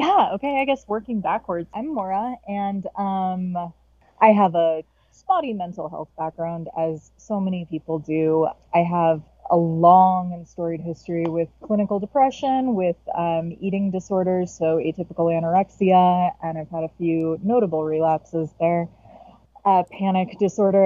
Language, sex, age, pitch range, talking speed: English, female, 20-39, 165-200 Hz, 145 wpm